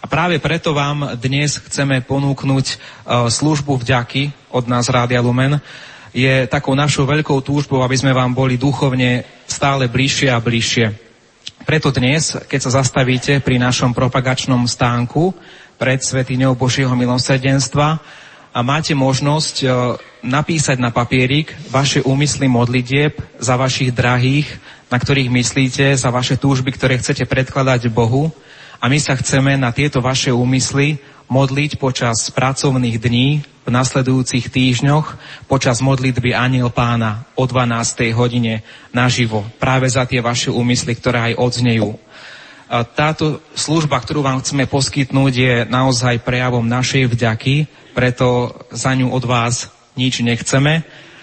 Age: 30-49